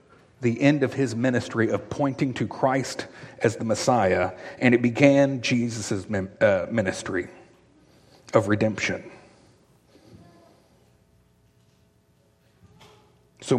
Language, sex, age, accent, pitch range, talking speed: English, male, 40-59, American, 110-130 Hz, 90 wpm